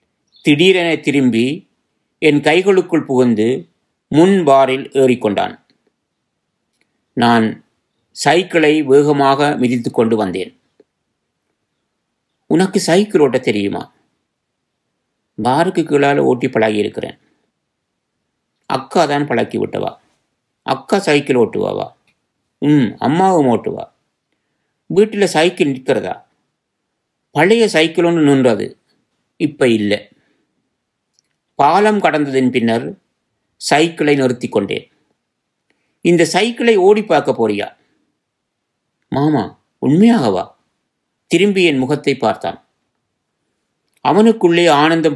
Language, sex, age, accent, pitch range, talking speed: Tamil, male, 50-69, native, 125-170 Hz, 75 wpm